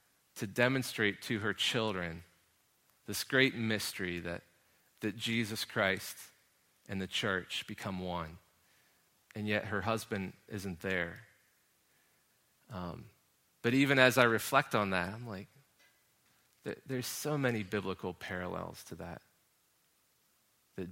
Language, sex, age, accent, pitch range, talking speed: English, male, 30-49, American, 95-120 Hz, 120 wpm